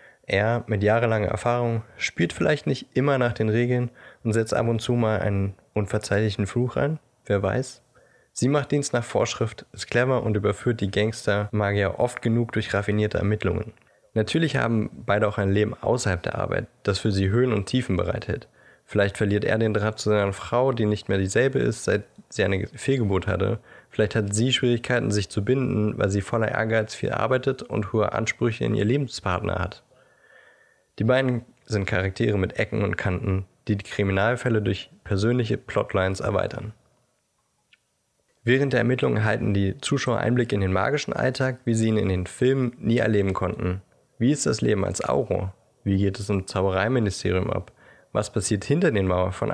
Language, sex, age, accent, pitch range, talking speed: German, male, 20-39, German, 100-120 Hz, 175 wpm